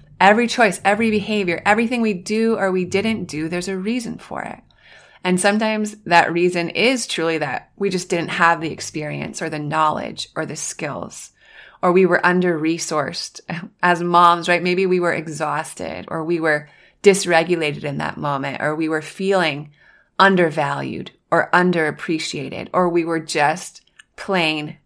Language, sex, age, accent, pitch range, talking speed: English, female, 20-39, American, 165-200 Hz, 155 wpm